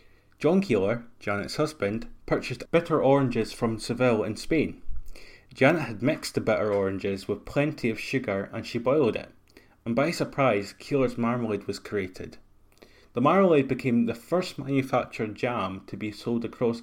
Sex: male